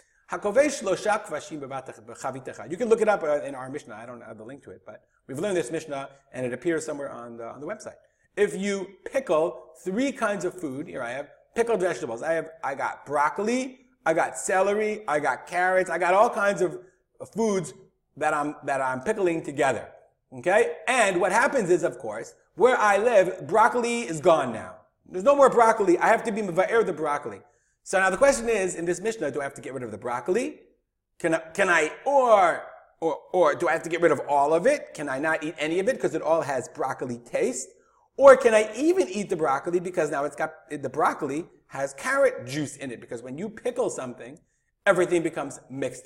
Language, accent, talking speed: English, American, 210 wpm